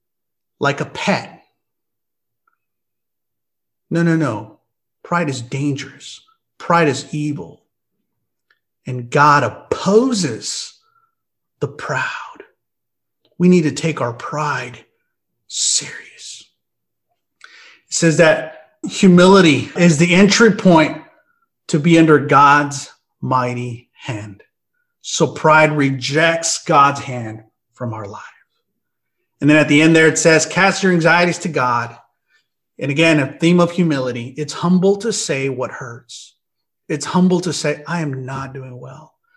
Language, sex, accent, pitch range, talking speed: English, male, American, 130-170 Hz, 120 wpm